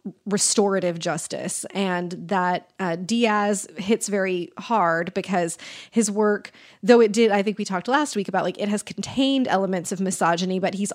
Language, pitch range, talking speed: English, 180-215 Hz, 170 wpm